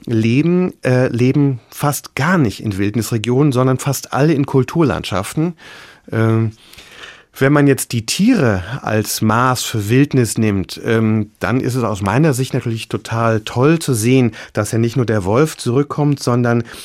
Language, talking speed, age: German, 155 wpm, 30-49